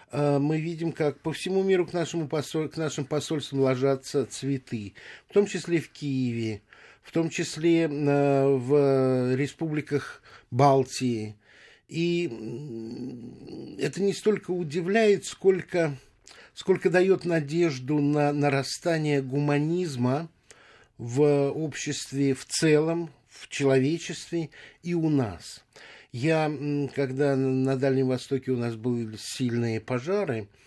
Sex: male